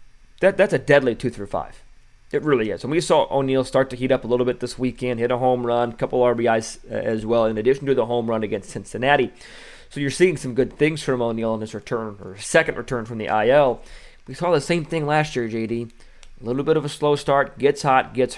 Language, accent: English, American